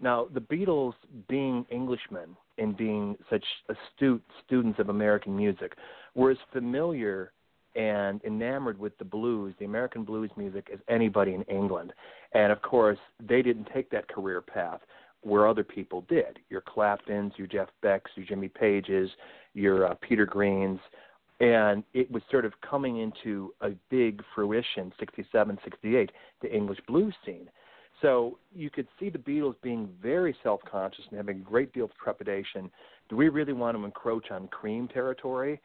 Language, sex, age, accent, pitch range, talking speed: English, male, 40-59, American, 100-125 Hz, 160 wpm